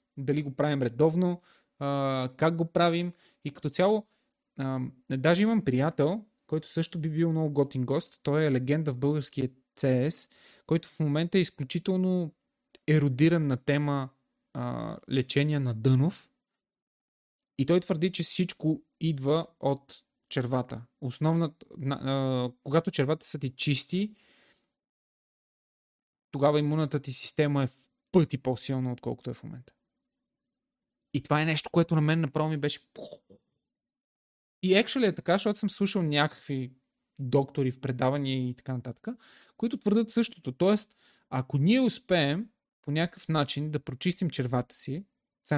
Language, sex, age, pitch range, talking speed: Bulgarian, male, 20-39, 135-170 Hz, 135 wpm